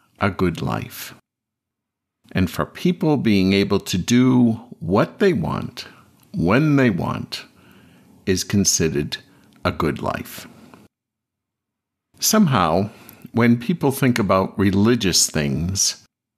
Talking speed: 105 wpm